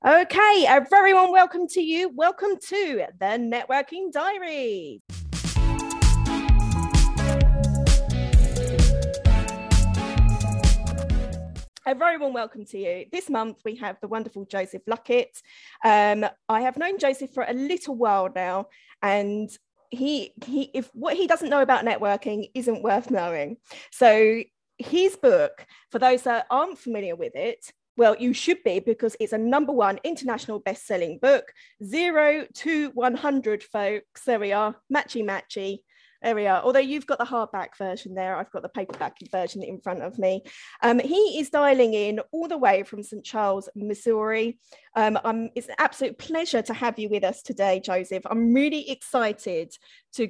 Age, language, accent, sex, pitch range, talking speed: 30-49, English, British, female, 200-280 Hz, 150 wpm